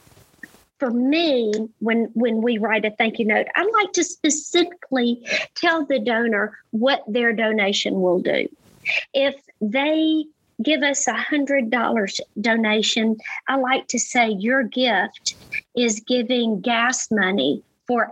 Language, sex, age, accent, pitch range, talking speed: English, female, 50-69, American, 220-275 Hz, 135 wpm